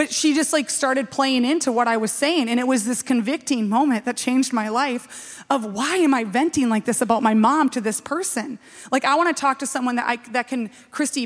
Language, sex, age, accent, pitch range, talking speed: English, female, 30-49, American, 235-280 Hz, 245 wpm